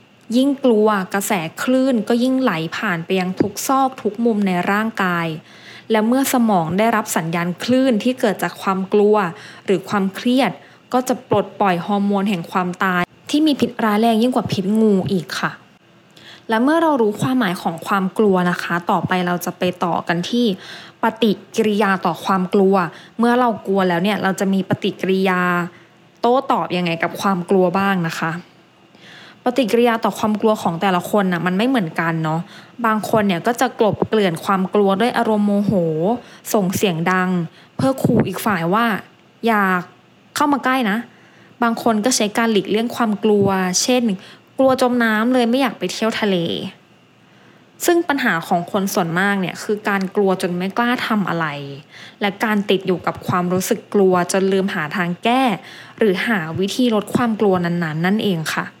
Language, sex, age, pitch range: English, female, 20-39, 185-230 Hz